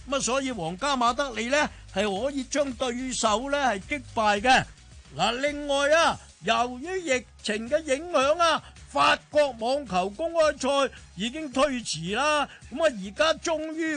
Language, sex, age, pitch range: Chinese, male, 50-69, 230-295 Hz